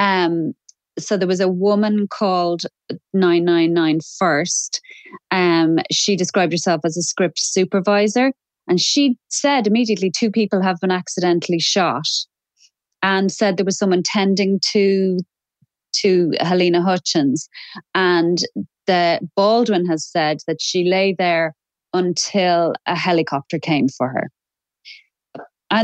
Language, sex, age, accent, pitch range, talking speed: English, female, 30-49, Irish, 175-220 Hz, 125 wpm